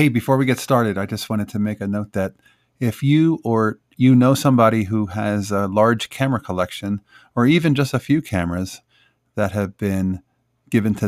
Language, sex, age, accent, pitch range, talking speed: English, male, 40-59, American, 100-130 Hz, 195 wpm